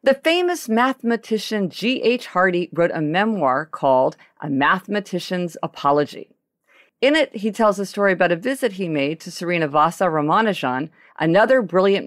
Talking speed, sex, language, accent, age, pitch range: 150 wpm, female, English, American, 50-69, 165-240 Hz